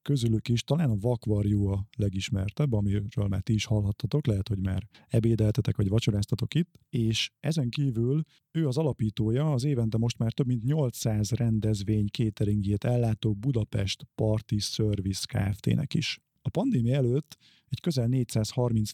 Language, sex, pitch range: Hungarian, male, 105-130 Hz